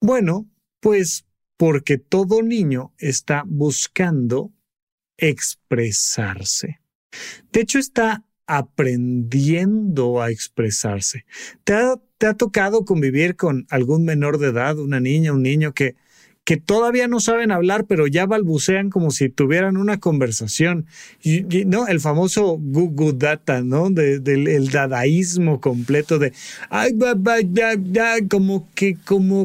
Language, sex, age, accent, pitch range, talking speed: Spanish, male, 40-59, Mexican, 140-195 Hz, 125 wpm